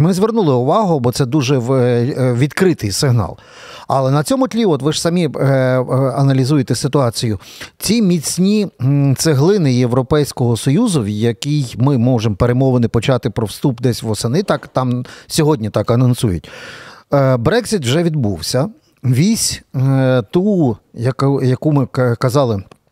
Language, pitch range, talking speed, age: Ukrainian, 120-155 Hz, 130 wpm, 40-59